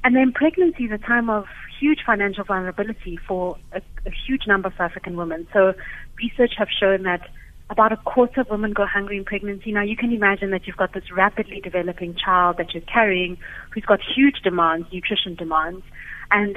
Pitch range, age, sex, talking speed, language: 185-220 Hz, 30-49, female, 195 wpm, English